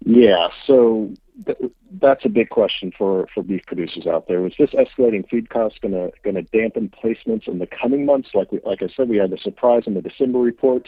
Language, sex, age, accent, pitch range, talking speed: English, male, 50-69, American, 100-125 Hz, 215 wpm